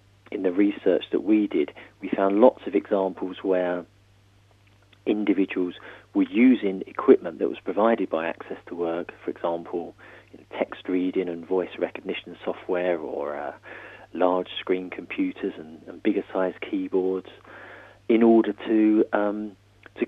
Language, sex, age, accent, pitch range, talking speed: English, male, 40-59, British, 95-115 Hz, 145 wpm